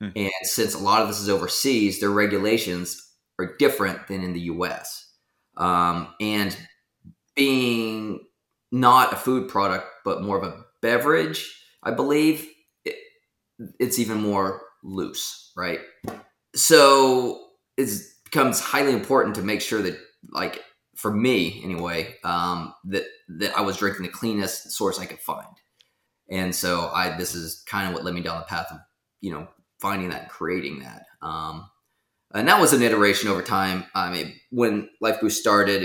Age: 20-39